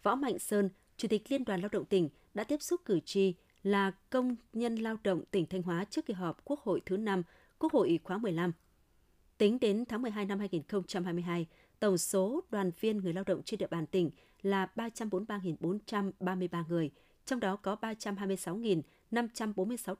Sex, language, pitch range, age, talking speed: female, Vietnamese, 180-220 Hz, 20-39, 175 wpm